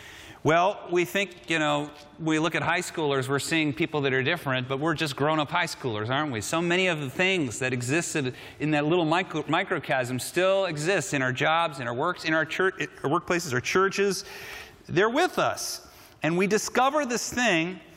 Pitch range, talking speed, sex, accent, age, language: 130-175 Hz, 200 wpm, male, American, 40-59, Dutch